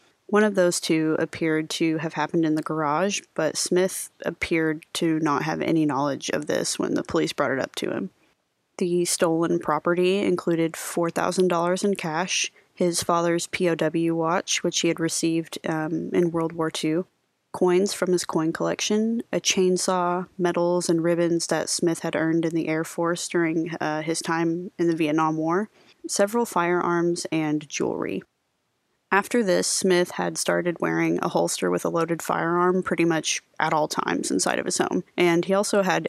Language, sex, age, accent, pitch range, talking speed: English, female, 20-39, American, 160-180 Hz, 175 wpm